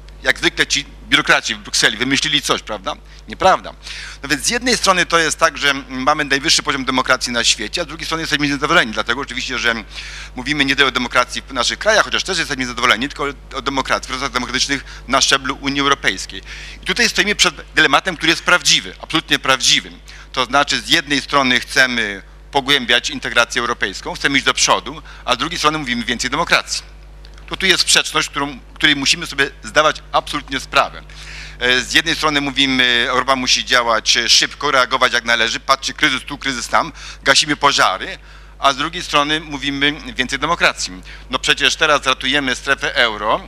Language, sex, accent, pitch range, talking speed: Polish, male, native, 130-150 Hz, 175 wpm